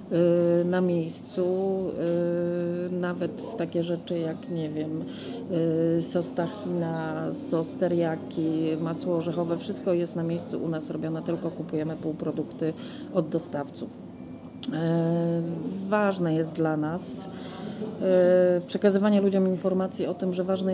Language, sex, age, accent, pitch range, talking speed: Polish, female, 30-49, native, 170-205 Hz, 100 wpm